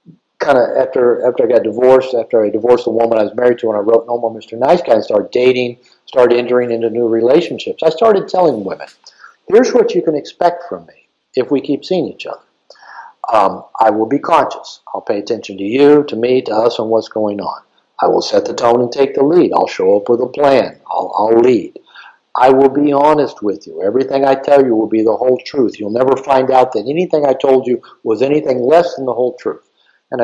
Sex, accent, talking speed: male, American, 230 wpm